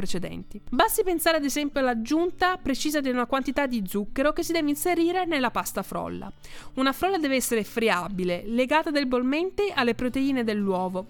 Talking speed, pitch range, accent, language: 155 wpm, 210-315 Hz, native, Italian